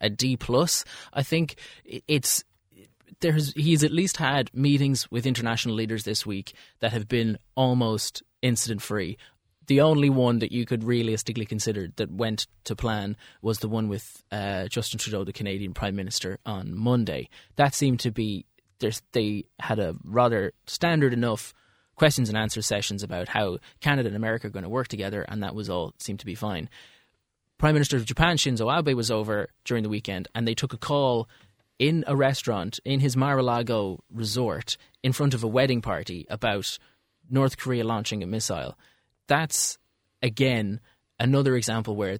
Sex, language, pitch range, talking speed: male, English, 105-135 Hz, 170 wpm